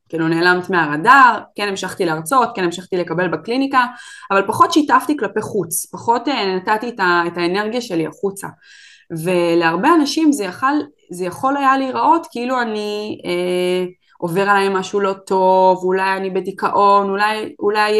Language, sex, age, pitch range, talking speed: Hebrew, female, 20-39, 180-235 Hz, 140 wpm